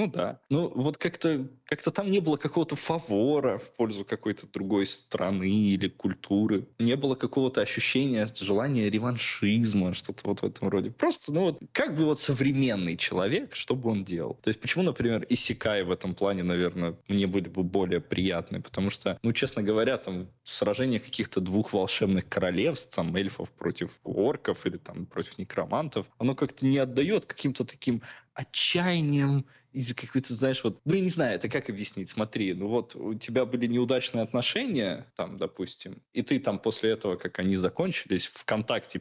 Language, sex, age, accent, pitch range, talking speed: Russian, male, 20-39, native, 105-165 Hz, 170 wpm